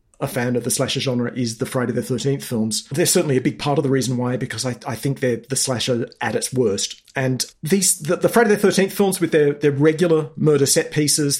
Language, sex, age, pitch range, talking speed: English, male, 40-59, 125-155 Hz, 240 wpm